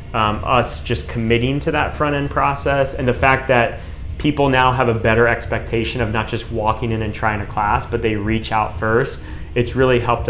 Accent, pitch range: American, 110-125 Hz